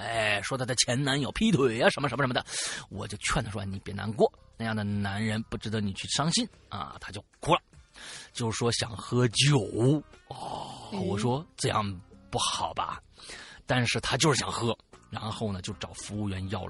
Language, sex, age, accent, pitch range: Chinese, male, 30-49, native, 100-125 Hz